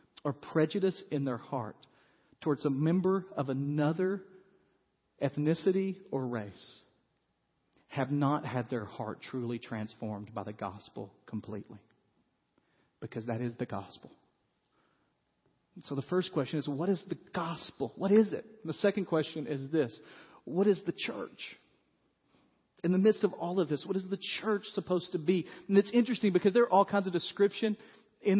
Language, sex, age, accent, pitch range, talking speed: English, male, 40-59, American, 155-205 Hz, 160 wpm